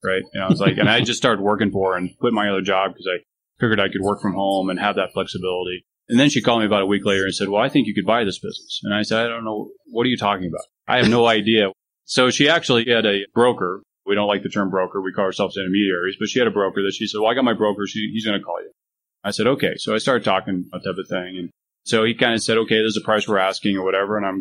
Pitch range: 95-110 Hz